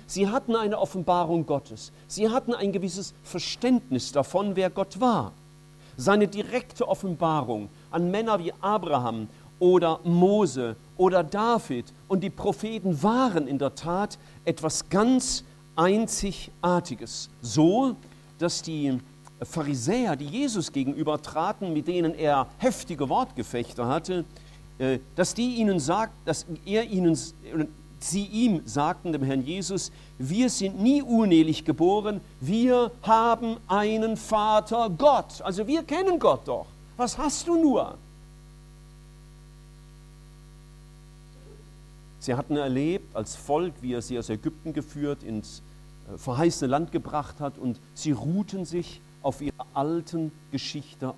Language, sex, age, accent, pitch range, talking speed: German, male, 50-69, German, 145-195 Hz, 120 wpm